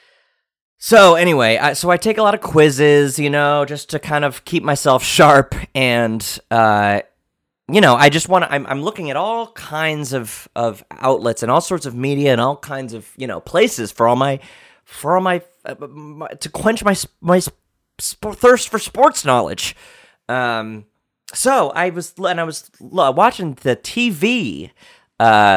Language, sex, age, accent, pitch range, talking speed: English, male, 30-49, American, 125-170 Hz, 170 wpm